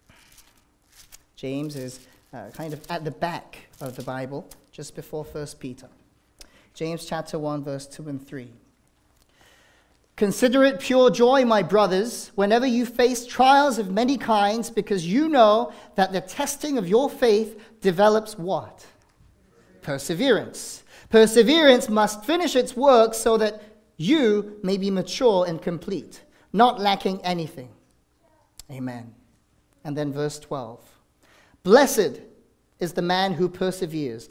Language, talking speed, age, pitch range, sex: English, 130 wpm, 30-49, 140-210 Hz, male